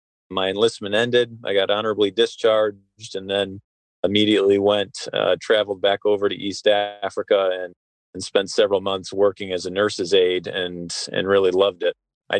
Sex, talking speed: male, 165 wpm